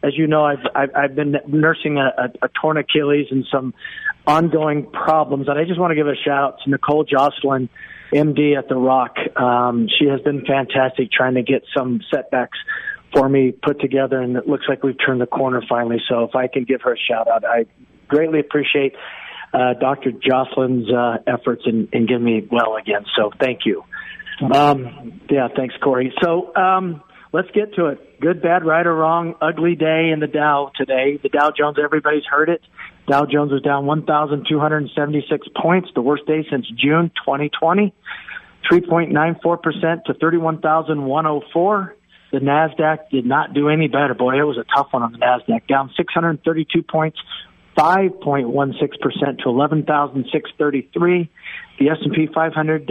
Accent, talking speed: American, 170 wpm